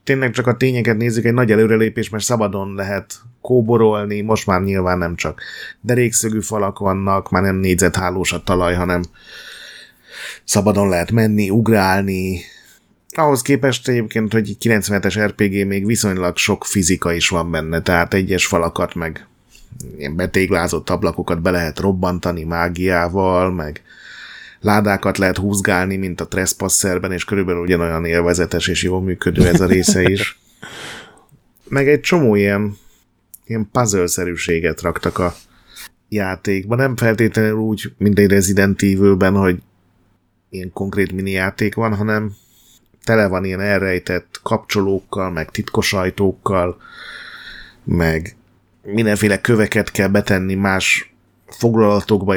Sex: male